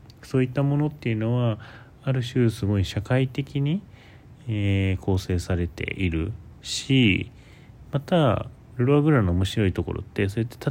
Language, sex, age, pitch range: Japanese, male, 30-49, 90-130 Hz